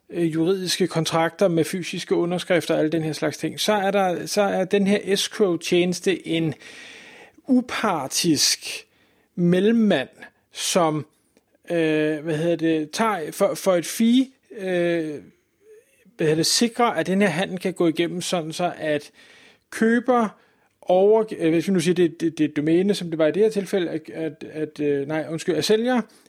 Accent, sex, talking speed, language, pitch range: native, male, 160 wpm, Danish, 160-200 Hz